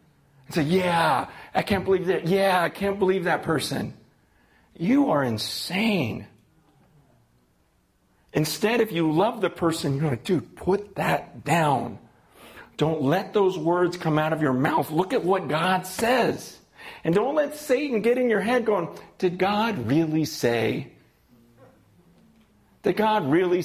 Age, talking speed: 40-59, 150 wpm